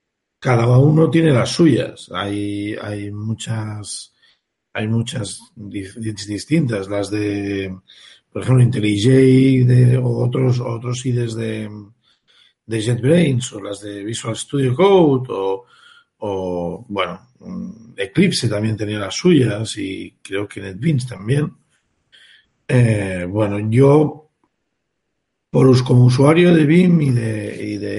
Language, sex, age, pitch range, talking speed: Spanish, male, 50-69, 110-155 Hz, 120 wpm